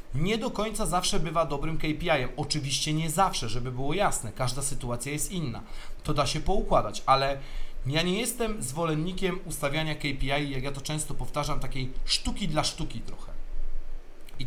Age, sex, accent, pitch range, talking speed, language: 40-59, male, native, 135-175 Hz, 160 wpm, Polish